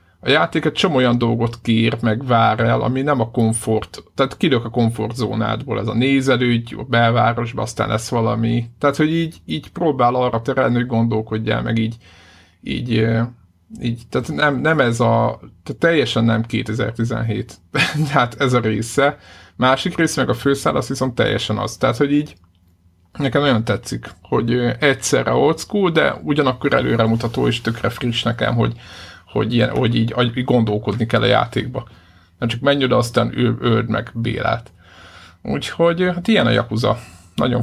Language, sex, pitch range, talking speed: Hungarian, male, 110-125 Hz, 155 wpm